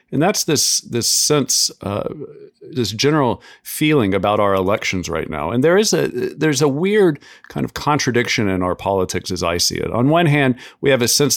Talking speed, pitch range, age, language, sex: 200 wpm, 100-130 Hz, 40-59, English, male